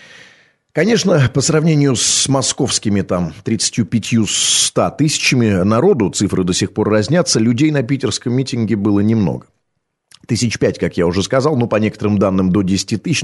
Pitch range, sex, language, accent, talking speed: 105-135 Hz, male, Russian, native, 150 wpm